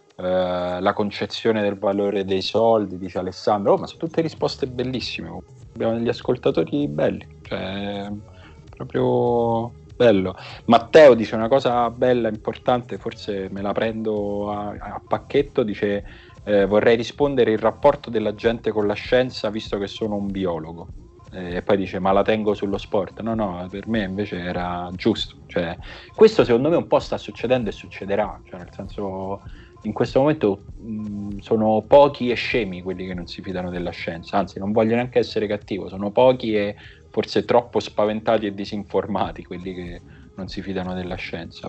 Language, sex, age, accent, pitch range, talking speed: Italian, male, 30-49, native, 90-110 Hz, 165 wpm